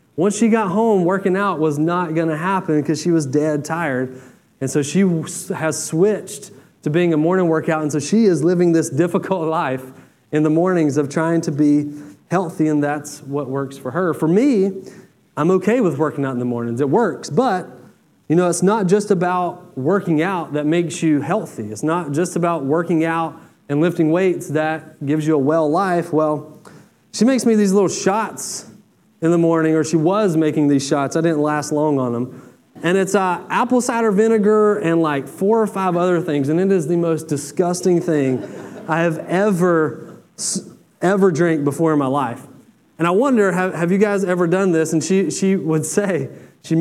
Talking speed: 195 wpm